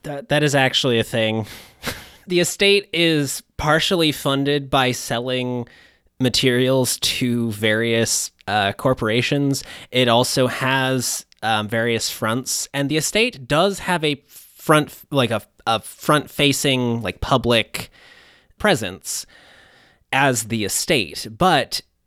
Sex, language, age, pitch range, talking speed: male, English, 20-39, 110-135 Hz, 115 wpm